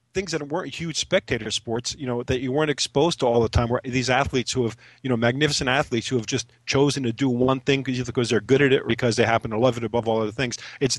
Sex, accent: male, American